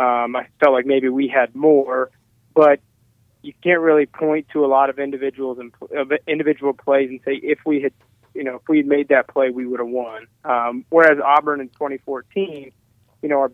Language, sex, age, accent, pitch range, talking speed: English, male, 30-49, American, 120-140 Hz, 210 wpm